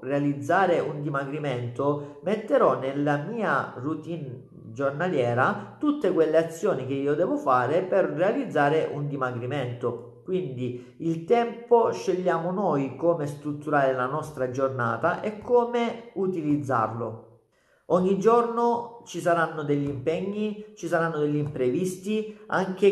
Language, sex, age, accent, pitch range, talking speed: Italian, male, 40-59, native, 140-195 Hz, 115 wpm